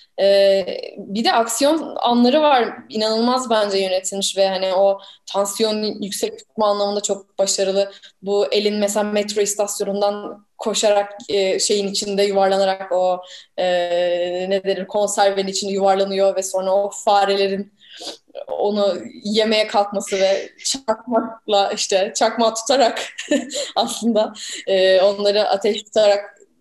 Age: 10-29